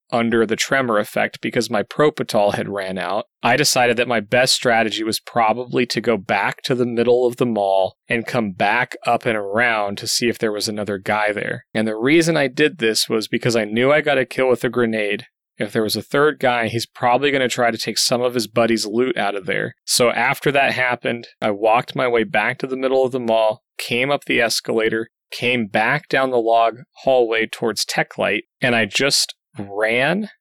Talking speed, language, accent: 215 wpm, English, American